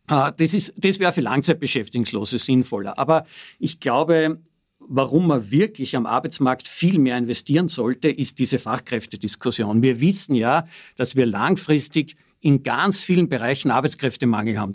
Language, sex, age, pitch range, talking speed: German, male, 50-69, 125-160 Hz, 135 wpm